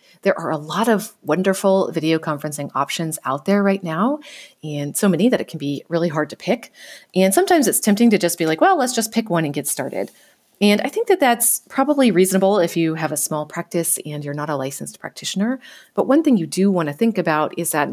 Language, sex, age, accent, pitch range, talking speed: English, female, 30-49, American, 150-205 Hz, 235 wpm